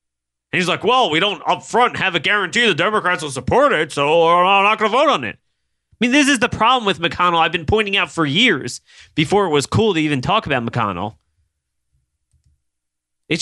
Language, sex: English, male